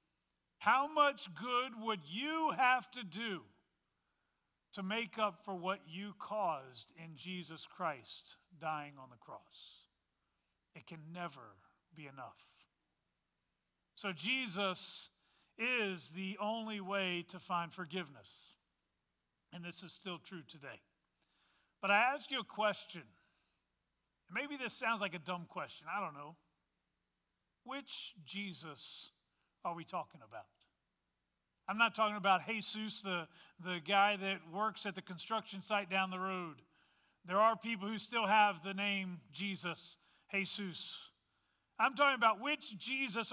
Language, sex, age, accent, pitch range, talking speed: English, male, 40-59, American, 175-230 Hz, 135 wpm